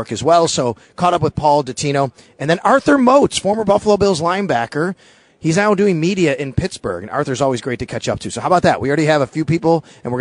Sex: male